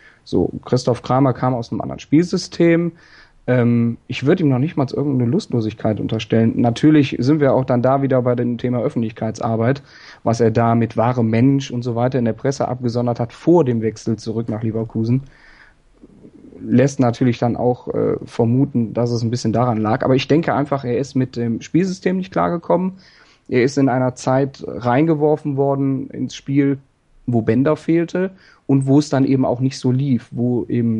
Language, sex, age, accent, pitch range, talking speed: German, male, 30-49, German, 115-140 Hz, 185 wpm